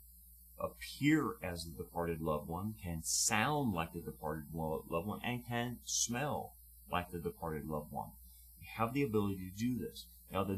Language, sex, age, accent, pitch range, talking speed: English, male, 30-49, American, 75-110 Hz, 170 wpm